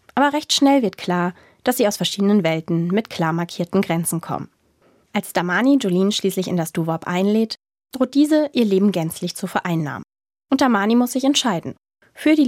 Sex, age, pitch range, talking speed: female, 20-39, 180-245 Hz, 180 wpm